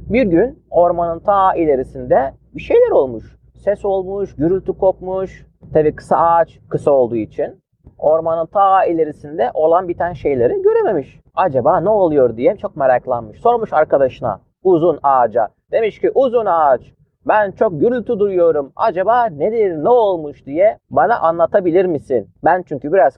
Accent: native